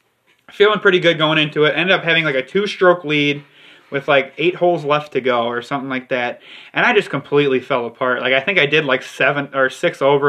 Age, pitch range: 20-39, 130-150 Hz